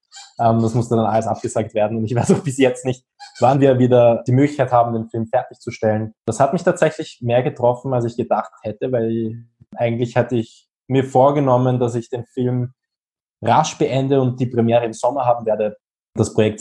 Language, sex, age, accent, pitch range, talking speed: German, male, 20-39, German, 105-125 Hz, 200 wpm